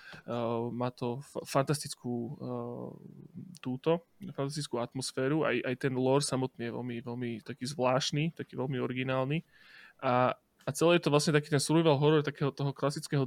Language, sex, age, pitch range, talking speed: Slovak, male, 20-39, 130-150 Hz, 150 wpm